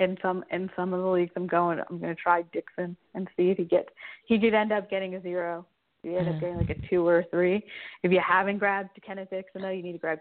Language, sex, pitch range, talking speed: English, female, 180-210 Hz, 275 wpm